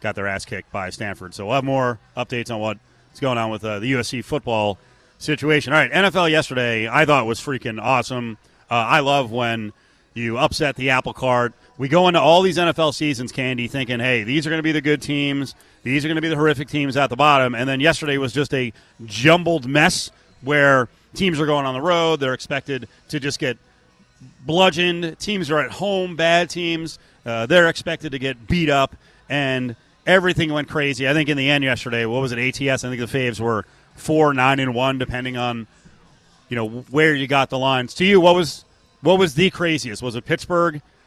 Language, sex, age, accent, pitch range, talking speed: English, male, 30-49, American, 120-155 Hz, 210 wpm